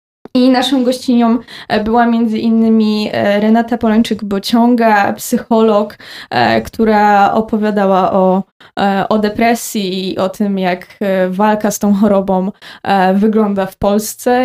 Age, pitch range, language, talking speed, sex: 20-39, 205-235 Hz, Polish, 100 wpm, female